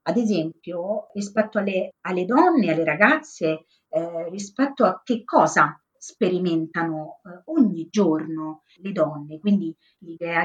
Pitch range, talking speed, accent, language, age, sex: 165-205 Hz, 120 wpm, native, Italian, 30-49, female